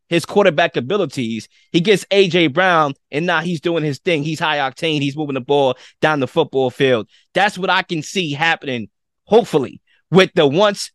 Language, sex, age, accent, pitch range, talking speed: English, male, 20-39, American, 145-185 Hz, 185 wpm